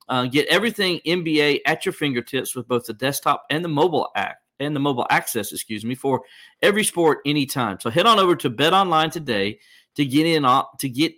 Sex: male